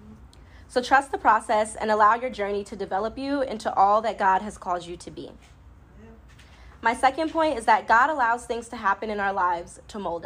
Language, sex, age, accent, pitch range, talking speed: English, female, 20-39, American, 200-250 Hz, 205 wpm